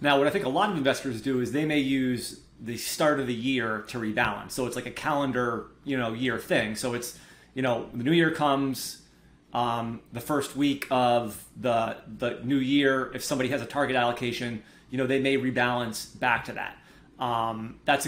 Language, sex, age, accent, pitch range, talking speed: English, male, 30-49, American, 120-140 Hz, 205 wpm